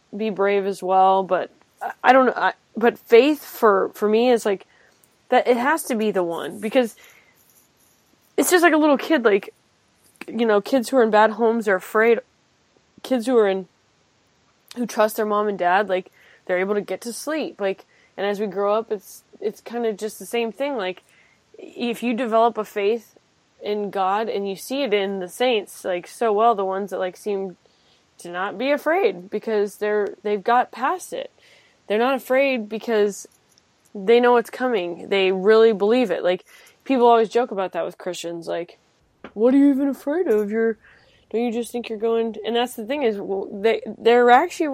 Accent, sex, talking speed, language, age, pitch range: American, female, 200 wpm, English, 10-29, 200-245 Hz